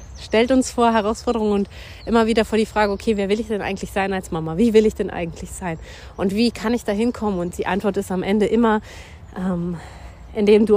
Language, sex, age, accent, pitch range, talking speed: German, female, 30-49, German, 170-205 Hz, 230 wpm